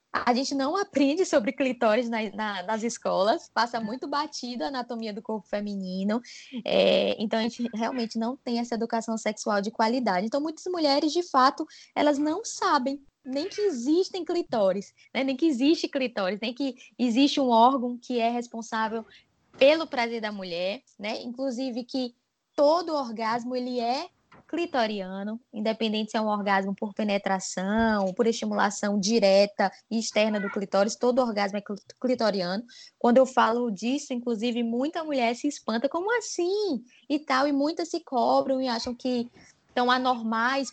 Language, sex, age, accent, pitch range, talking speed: English, female, 20-39, Brazilian, 220-275 Hz, 155 wpm